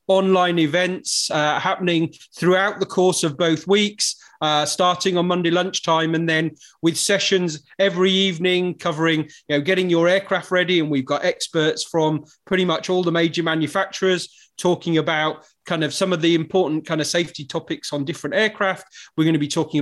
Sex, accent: male, British